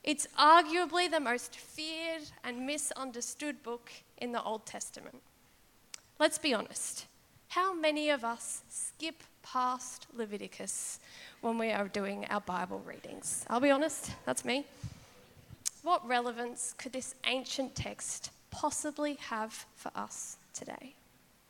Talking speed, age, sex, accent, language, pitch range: 125 wpm, 10-29, female, Australian, English, 235-275 Hz